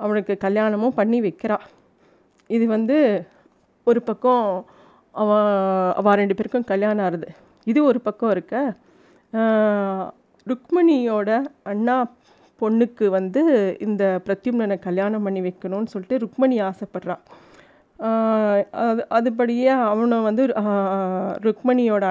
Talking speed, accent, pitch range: 90 wpm, native, 205-250 Hz